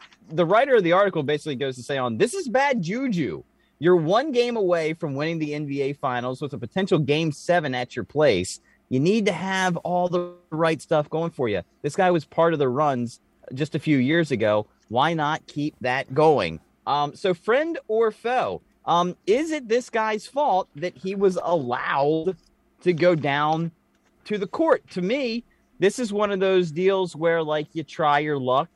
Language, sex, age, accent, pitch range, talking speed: English, male, 30-49, American, 140-195 Hz, 195 wpm